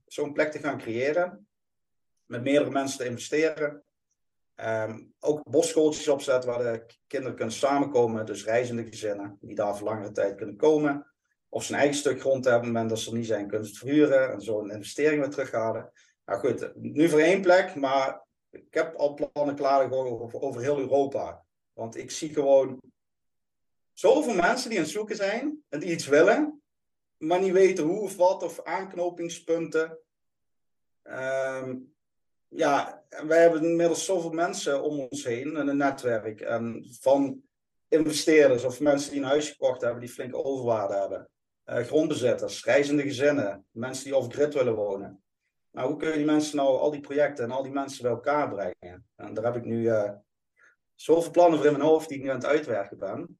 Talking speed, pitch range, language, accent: 180 wpm, 115-155 Hz, Dutch, Dutch